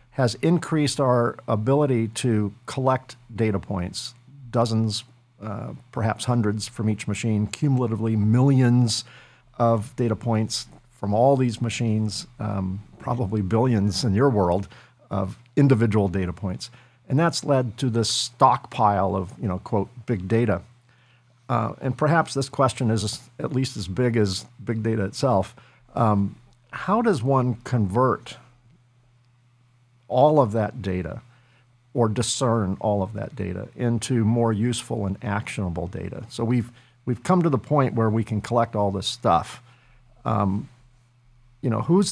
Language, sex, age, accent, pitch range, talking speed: English, male, 50-69, American, 105-125 Hz, 140 wpm